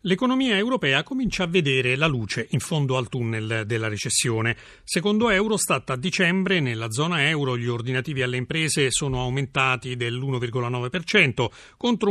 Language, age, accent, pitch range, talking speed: Italian, 40-59, native, 125-190 Hz, 140 wpm